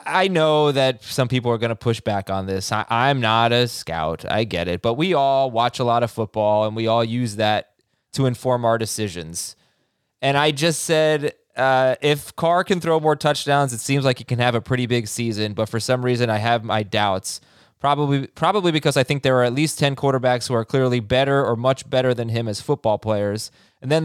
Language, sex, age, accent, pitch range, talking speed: English, male, 20-39, American, 110-145 Hz, 225 wpm